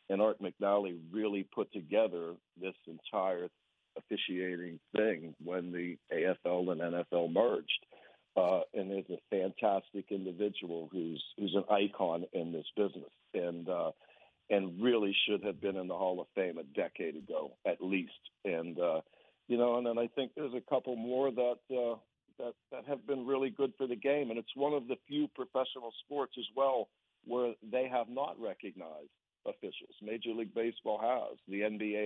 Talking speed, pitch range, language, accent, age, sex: 170 wpm, 95-125 Hz, English, American, 60-79, male